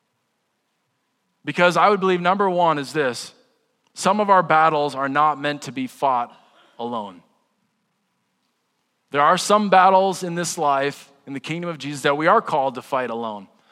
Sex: male